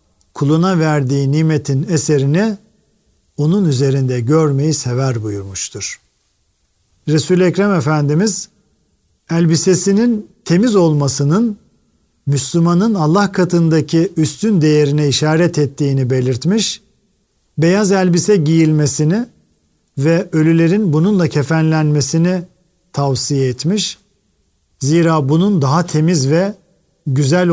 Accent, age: native, 50-69